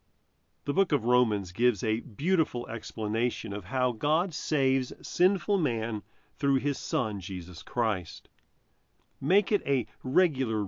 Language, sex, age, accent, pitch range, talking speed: English, male, 40-59, American, 105-155 Hz, 130 wpm